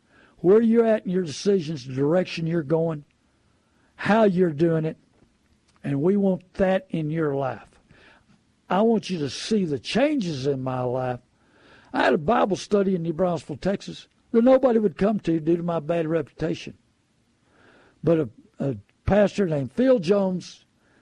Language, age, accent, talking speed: English, 60-79, American, 165 wpm